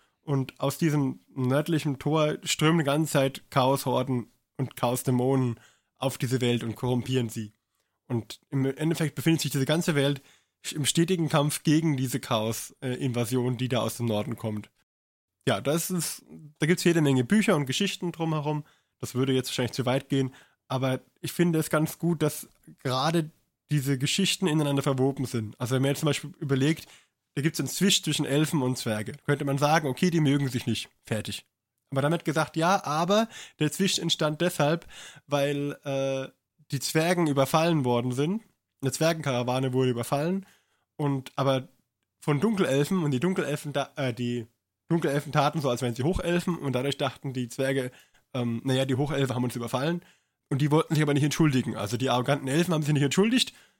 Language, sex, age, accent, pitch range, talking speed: German, male, 20-39, German, 130-160 Hz, 175 wpm